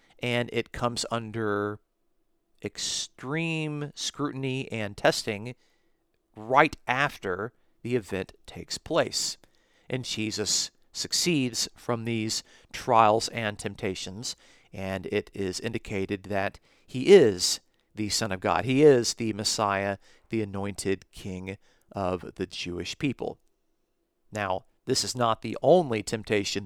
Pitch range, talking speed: 100-130 Hz, 115 wpm